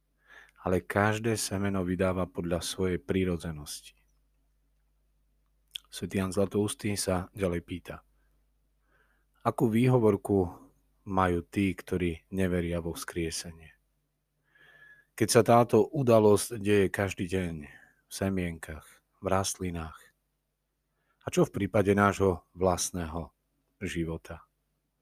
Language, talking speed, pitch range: Slovak, 95 wpm, 90-110 Hz